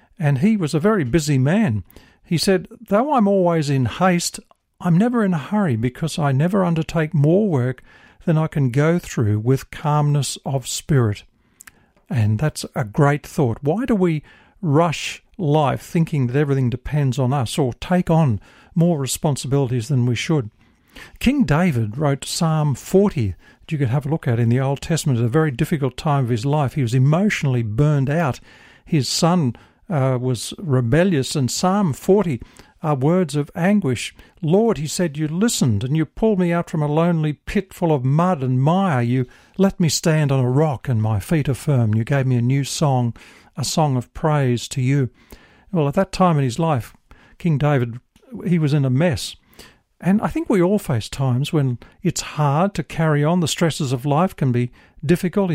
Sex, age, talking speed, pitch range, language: male, 50-69, 190 wpm, 130-170 Hz, English